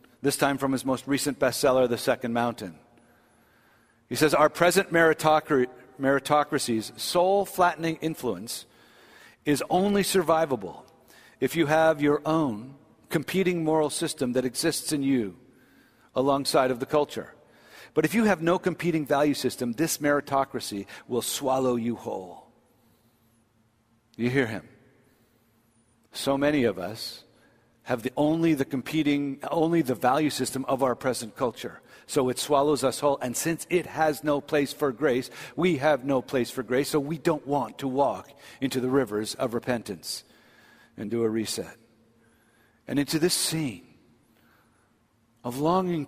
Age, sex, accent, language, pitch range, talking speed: 50-69, male, American, English, 125-155 Hz, 145 wpm